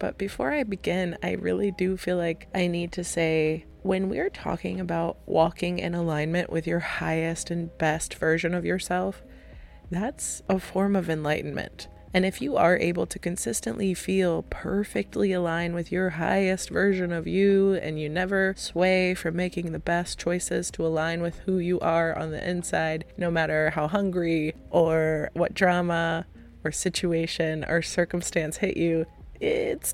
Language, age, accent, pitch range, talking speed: English, 20-39, American, 160-190 Hz, 160 wpm